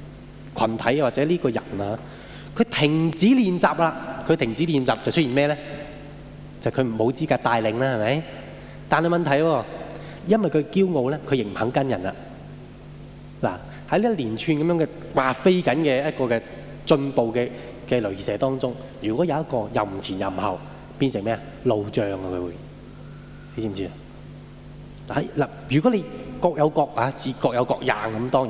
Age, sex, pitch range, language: 20-39, male, 115-155 Hz, Japanese